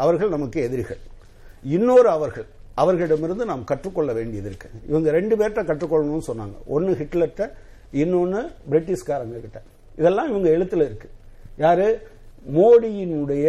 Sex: male